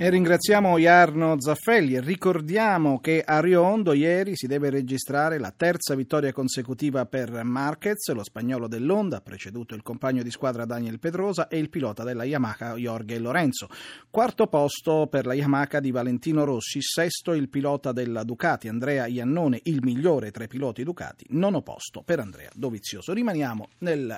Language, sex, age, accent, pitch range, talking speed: Italian, male, 40-59, native, 125-160 Hz, 160 wpm